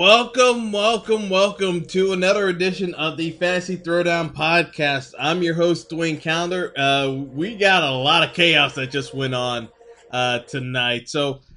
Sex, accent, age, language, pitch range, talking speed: male, American, 20-39, English, 155-205 Hz, 150 wpm